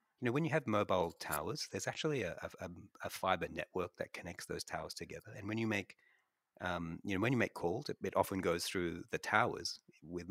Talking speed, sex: 215 wpm, male